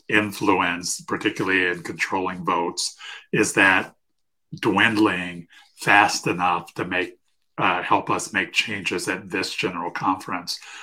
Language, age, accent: English, 50-69, American